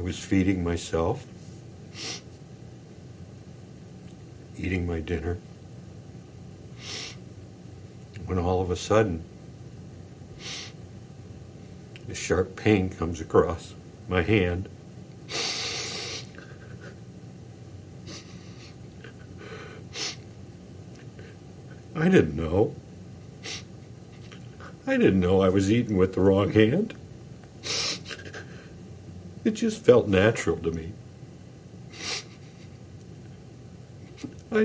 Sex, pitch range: male, 90-105 Hz